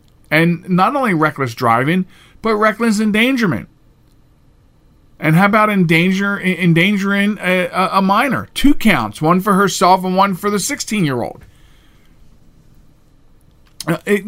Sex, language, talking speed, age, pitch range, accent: male, English, 115 wpm, 50-69, 135-200 Hz, American